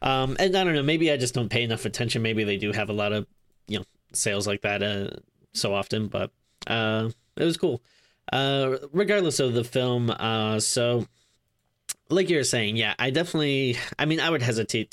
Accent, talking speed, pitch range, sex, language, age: American, 200 wpm, 105-130 Hz, male, English, 10-29